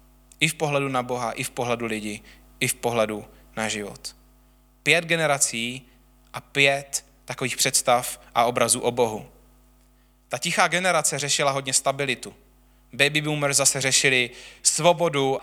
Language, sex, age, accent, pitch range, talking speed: Czech, male, 20-39, native, 120-145 Hz, 135 wpm